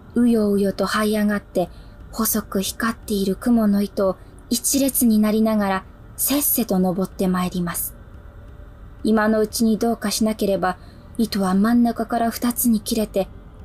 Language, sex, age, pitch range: Japanese, female, 20-39, 195-235 Hz